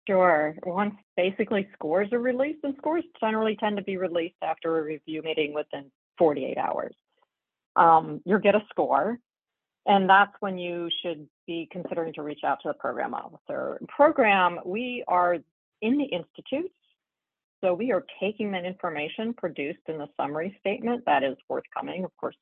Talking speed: 165 wpm